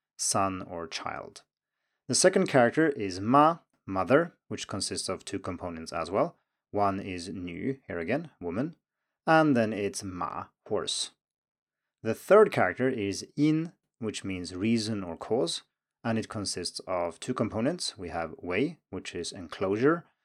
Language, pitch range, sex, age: Chinese, 95-130 Hz, male, 30-49